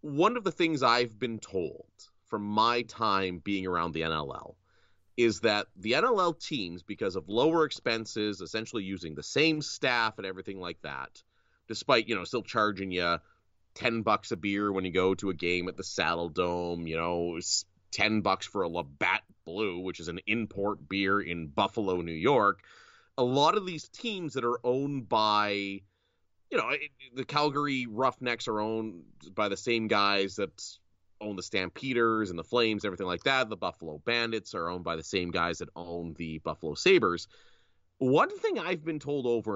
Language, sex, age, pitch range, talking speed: English, male, 30-49, 90-125 Hz, 180 wpm